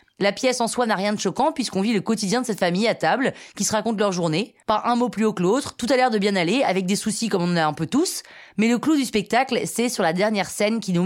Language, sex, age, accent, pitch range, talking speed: French, female, 20-39, French, 195-240 Hz, 310 wpm